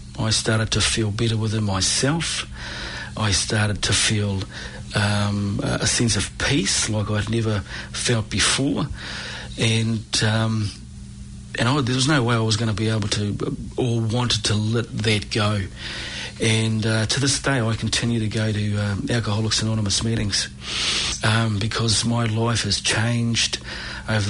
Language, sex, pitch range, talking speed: English, male, 105-115 Hz, 155 wpm